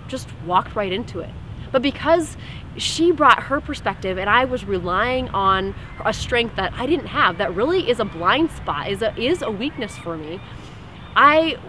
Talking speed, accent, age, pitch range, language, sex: 185 wpm, American, 20-39, 195-285 Hz, English, female